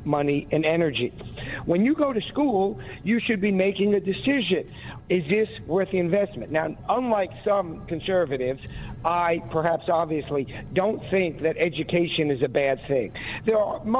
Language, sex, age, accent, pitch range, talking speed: English, male, 50-69, American, 150-190 Hz, 155 wpm